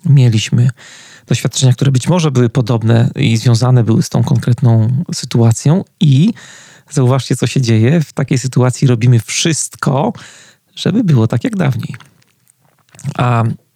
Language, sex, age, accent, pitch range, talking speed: Polish, male, 40-59, native, 120-150 Hz, 130 wpm